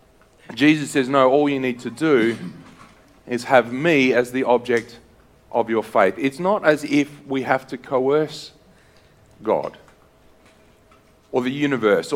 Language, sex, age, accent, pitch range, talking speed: English, male, 40-59, Australian, 130-155 Hz, 145 wpm